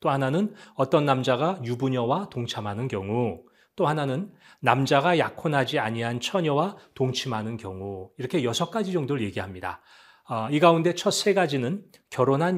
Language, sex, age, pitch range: Korean, male, 40-59, 120-175 Hz